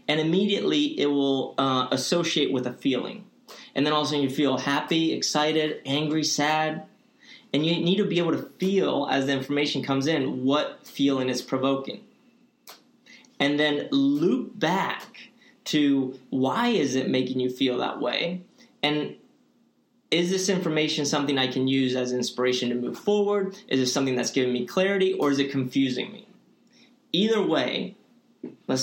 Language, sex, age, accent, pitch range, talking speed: English, male, 30-49, American, 130-180 Hz, 160 wpm